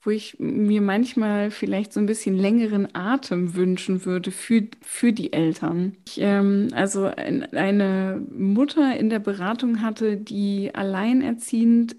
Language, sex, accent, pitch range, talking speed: German, female, German, 195-235 Hz, 130 wpm